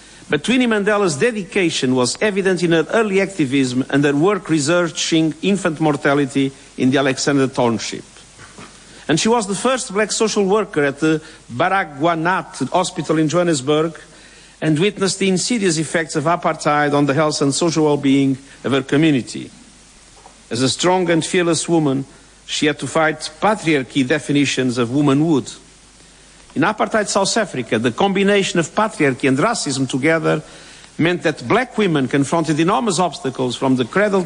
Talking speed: 150 wpm